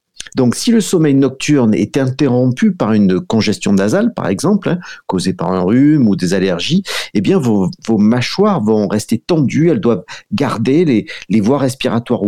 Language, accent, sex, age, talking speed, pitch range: French, French, male, 50-69, 175 wpm, 105-150 Hz